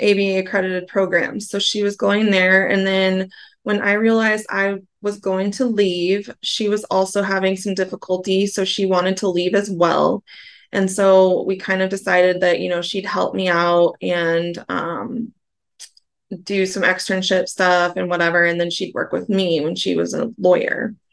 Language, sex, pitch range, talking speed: English, female, 175-195 Hz, 180 wpm